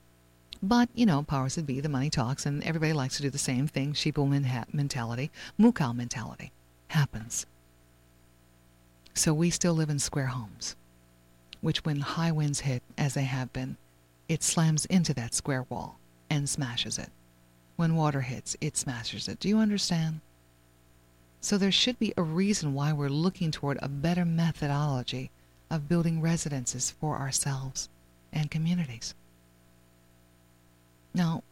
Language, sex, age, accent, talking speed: English, female, 50-69, American, 145 wpm